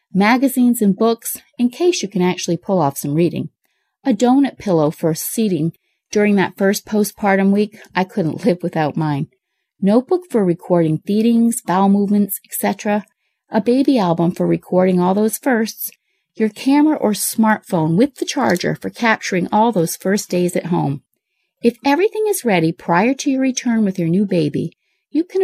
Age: 30-49